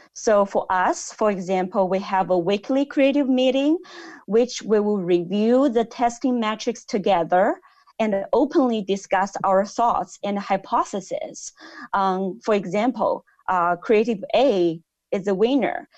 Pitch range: 190-245 Hz